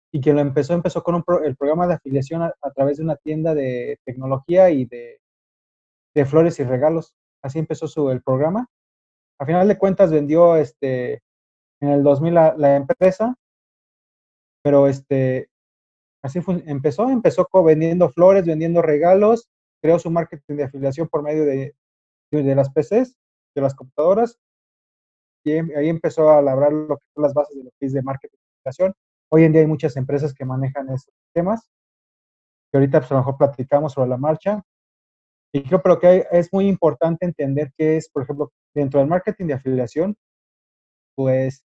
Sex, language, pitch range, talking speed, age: male, Spanish, 140-175 Hz, 180 wpm, 30-49